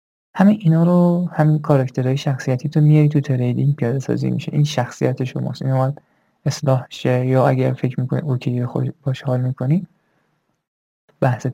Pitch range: 130-155 Hz